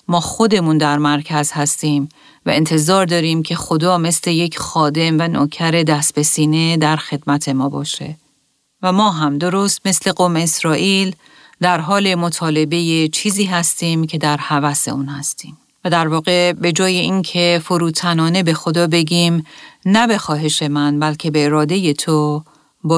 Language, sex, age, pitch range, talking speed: Persian, female, 40-59, 155-180 Hz, 150 wpm